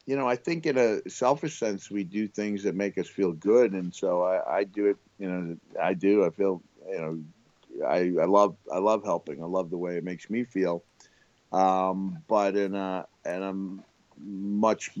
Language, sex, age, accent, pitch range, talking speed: English, male, 40-59, American, 90-105 Hz, 205 wpm